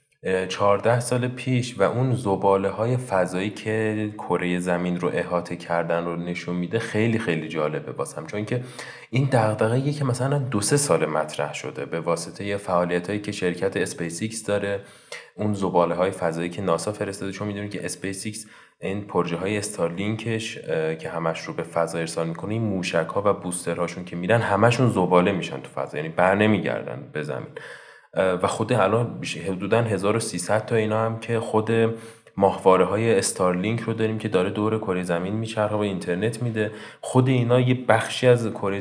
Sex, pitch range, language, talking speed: male, 95-115 Hz, Persian, 160 wpm